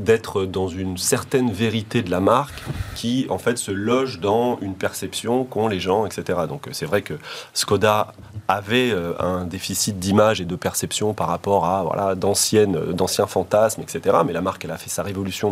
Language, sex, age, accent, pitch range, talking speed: French, male, 30-49, French, 95-115 Hz, 180 wpm